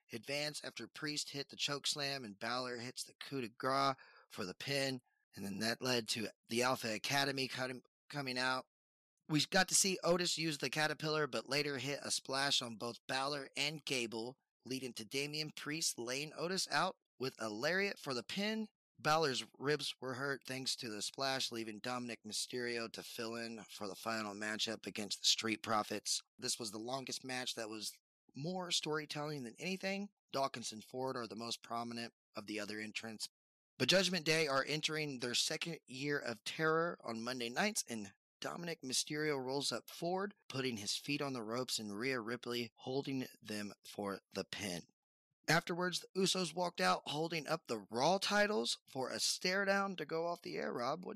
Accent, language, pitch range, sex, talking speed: American, English, 115-160 Hz, male, 180 wpm